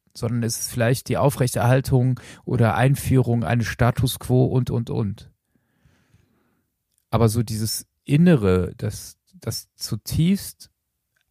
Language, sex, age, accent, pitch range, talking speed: German, male, 40-59, German, 105-130 Hz, 110 wpm